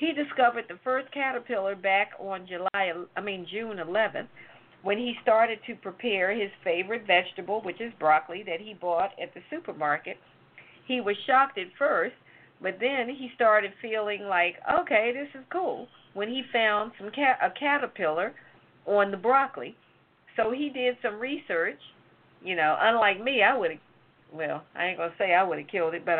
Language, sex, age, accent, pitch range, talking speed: English, female, 50-69, American, 185-255 Hz, 175 wpm